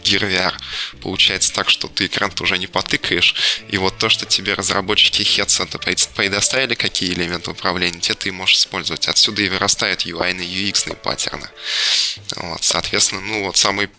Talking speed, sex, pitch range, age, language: 155 wpm, male, 90-105 Hz, 20-39, Russian